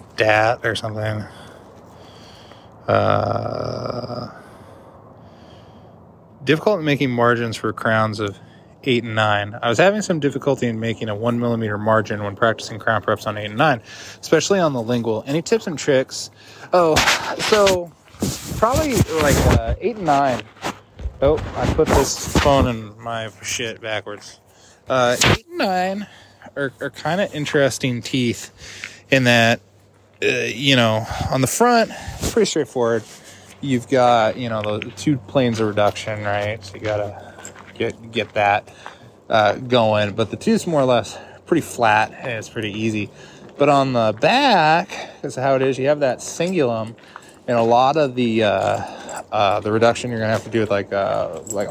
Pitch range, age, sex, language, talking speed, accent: 105-135 Hz, 20-39, male, English, 160 wpm, American